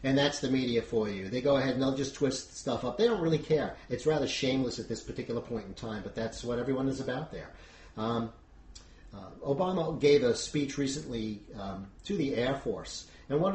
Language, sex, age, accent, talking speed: English, male, 50-69, American, 215 wpm